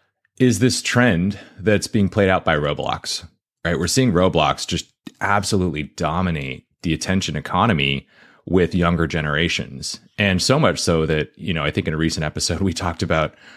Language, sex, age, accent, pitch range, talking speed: English, male, 30-49, American, 80-100 Hz, 170 wpm